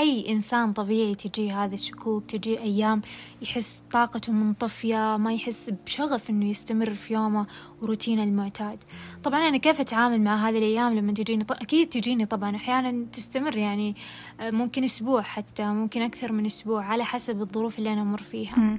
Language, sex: English, female